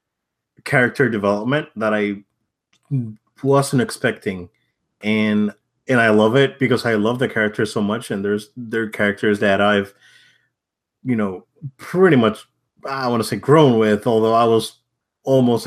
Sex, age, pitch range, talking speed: male, 30-49, 105-135 Hz, 145 wpm